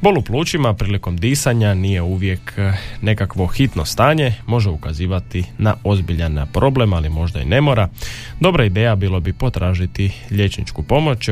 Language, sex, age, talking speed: Croatian, male, 20-39, 140 wpm